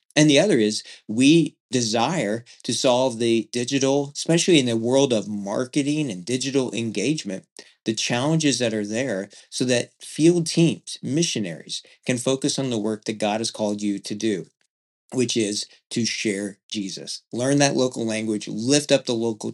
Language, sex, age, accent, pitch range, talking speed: English, male, 40-59, American, 115-165 Hz, 165 wpm